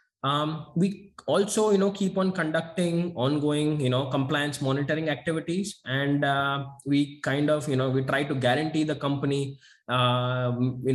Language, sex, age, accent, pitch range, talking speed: English, male, 20-39, Indian, 130-170 Hz, 160 wpm